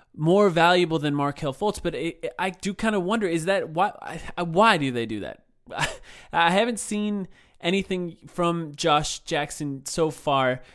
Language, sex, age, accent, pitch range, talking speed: English, male, 20-39, American, 130-165 Hz, 160 wpm